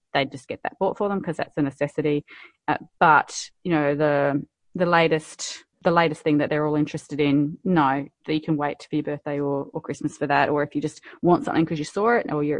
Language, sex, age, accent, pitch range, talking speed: English, female, 30-49, Australian, 150-195 Hz, 240 wpm